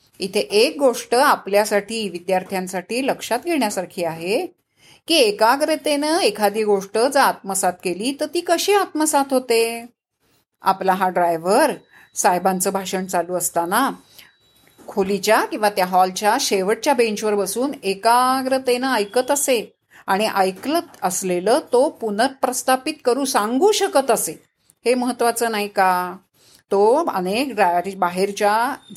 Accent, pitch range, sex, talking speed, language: native, 200-280 Hz, female, 115 wpm, Marathi